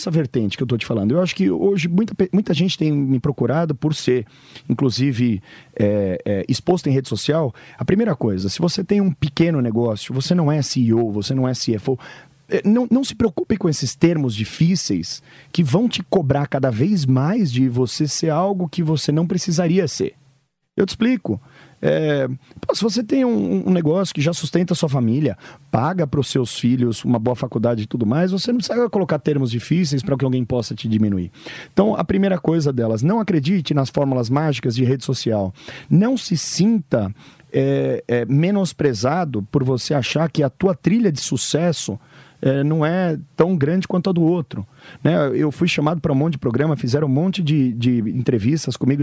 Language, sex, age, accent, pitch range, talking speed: English, male, 40-59, Brazilian, 130-180 Hz, 195 wpm